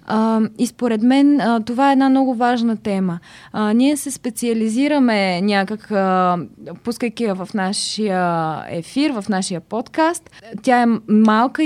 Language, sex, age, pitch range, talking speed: Bulgarian, female, 20-39, 210-255 Hz, 140 wpm